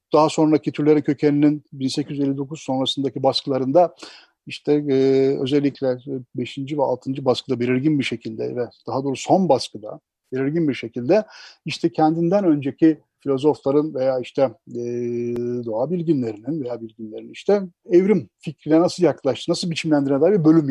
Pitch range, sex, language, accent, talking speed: 125-155 Hz, male, Turkish, native, 135 wpm